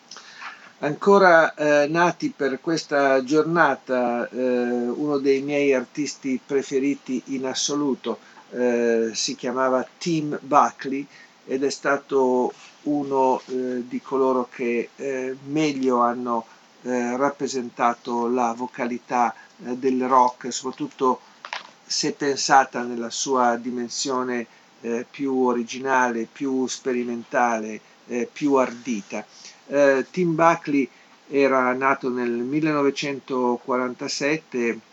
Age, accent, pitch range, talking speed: 50-69, native, 120-140 Hz, 100 wpm